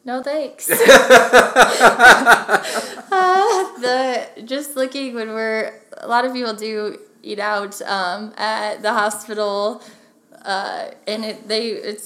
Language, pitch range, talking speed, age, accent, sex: English, 215-255 Hz, 120 wpm, 10-29, American, female